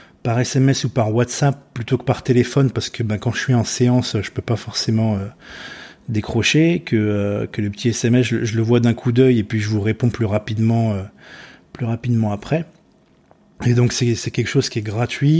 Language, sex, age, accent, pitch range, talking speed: French, male, 20-39, French, 115-135 Hz, 220 wpm